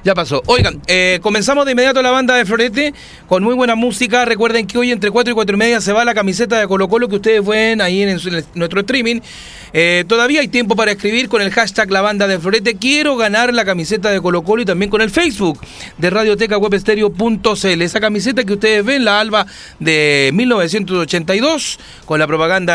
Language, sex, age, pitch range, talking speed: Spanish, male, 40-59, 180-235 Hz, 215 wpm